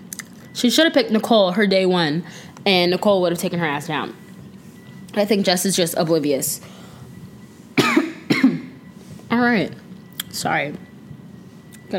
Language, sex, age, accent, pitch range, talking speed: English, female, 10-29, American, 195-250 Hz, 130 wpm